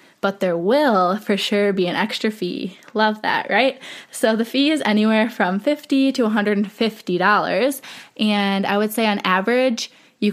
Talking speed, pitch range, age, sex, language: 165 wpm, 185-220 Hz, 20-39, female, English